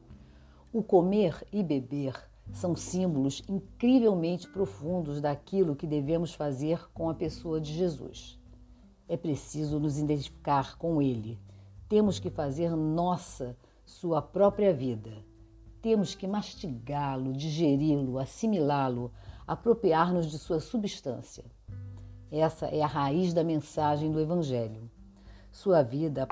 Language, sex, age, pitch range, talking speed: Portuguese, female, 50-69, 125-170 Hz, 115 wpm